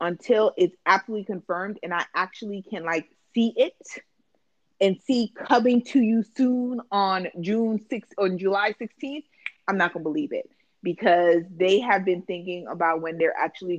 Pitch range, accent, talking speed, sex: 175-215 Hz, American, 160 wpm, female